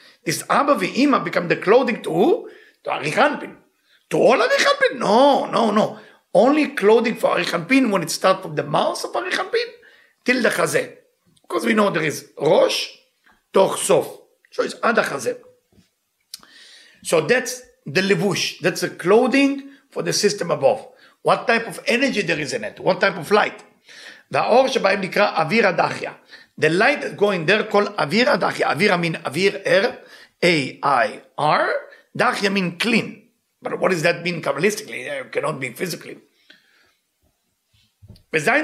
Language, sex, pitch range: English, male, 190-290 Hz